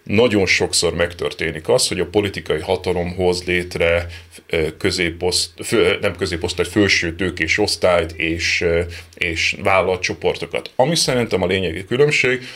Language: Hungarian